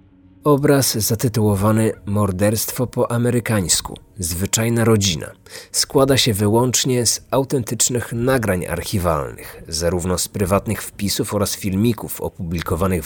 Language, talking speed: Polish, 95 wpm